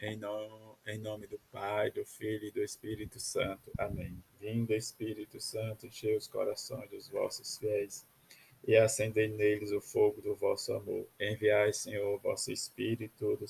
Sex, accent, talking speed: male, Brazilian, 155 wpm